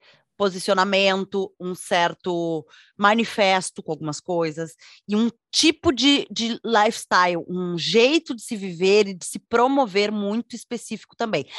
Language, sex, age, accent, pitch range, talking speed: Portuguese, female, 20-39, Brazilian, 180-240 Hz, 130 wpm